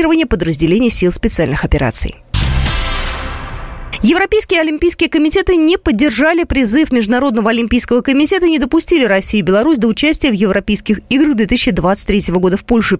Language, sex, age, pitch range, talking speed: Russian, female, 20-39, 195-300 Hz, 130 wpm